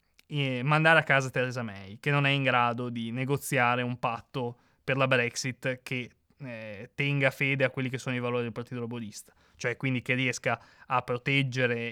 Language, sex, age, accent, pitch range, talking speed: Italian, male, 20-39, native, 115-140 Hz, 185 wpm